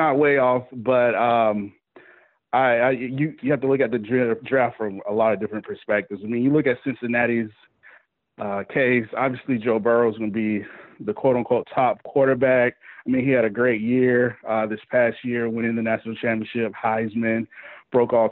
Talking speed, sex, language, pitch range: 190 wpm, male, English, 115-135 Hz